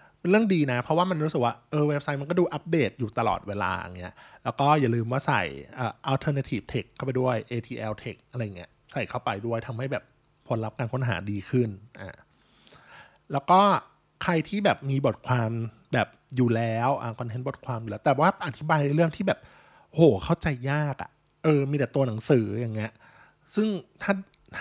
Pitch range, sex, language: 115-160 Hz, male, Thai